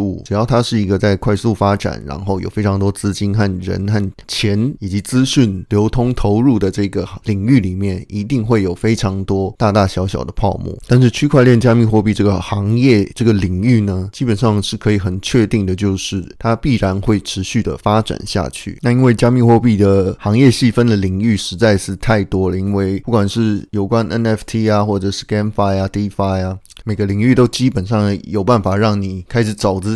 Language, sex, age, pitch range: Chinese, male, 20-39, 100-115 Hz